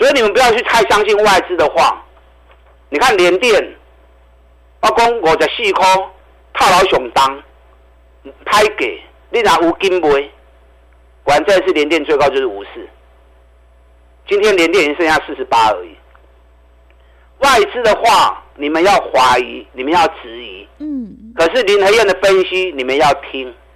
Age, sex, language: 50-69, male, Chinese